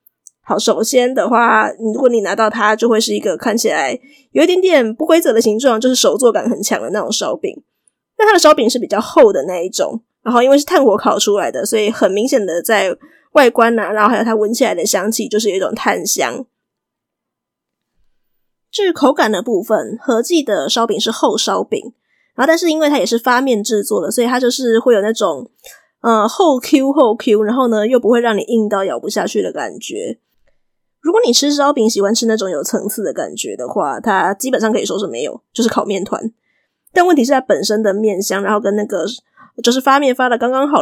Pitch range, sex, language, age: 215-270 Hz, female, Chinese, 20-39